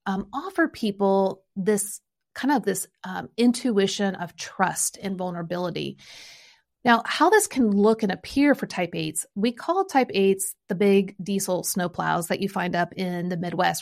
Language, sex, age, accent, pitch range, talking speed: English, female, 30-49, American, 185-230 Hz, 170 wpm